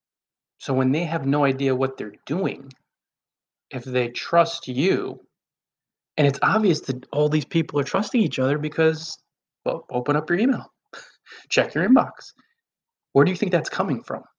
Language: English